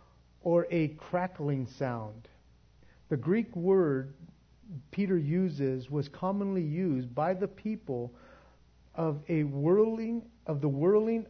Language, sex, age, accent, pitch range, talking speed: English, male, 50-69, American, 115-165 Hz, 110 wpm